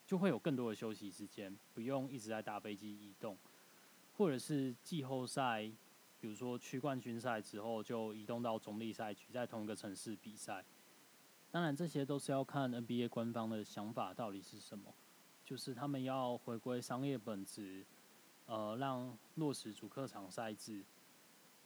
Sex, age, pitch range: male, 10-29, 105-130 Hz